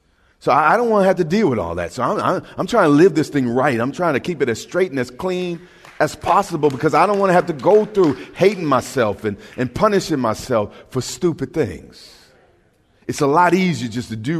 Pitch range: 90-140 Hz